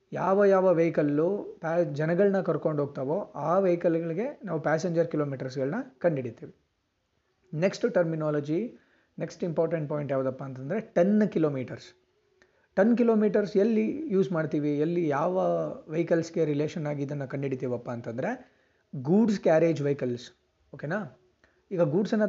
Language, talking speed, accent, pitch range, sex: Kannada, 115 wpm, native, 140-175 Hz, male